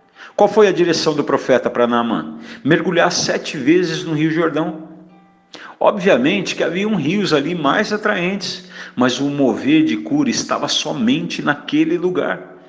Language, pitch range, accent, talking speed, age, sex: Portuguese, 140-205 Hz, Brazilian, 140 wpm, 50-69, male